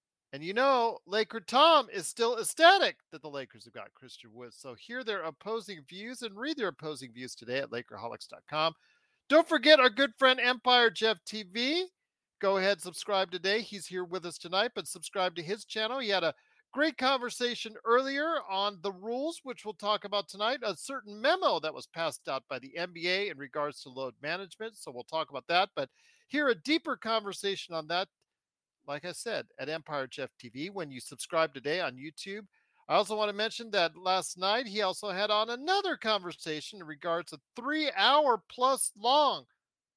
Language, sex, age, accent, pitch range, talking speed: English, male, 40-59, American, 165-245 Hz, 185 wpm